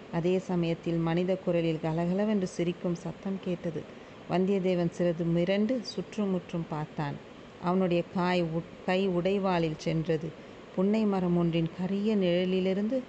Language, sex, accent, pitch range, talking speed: Tamil, female, native, 175-210 Hz, 110 wpm